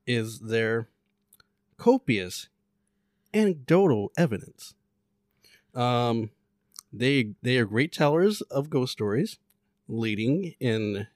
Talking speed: 85 wpm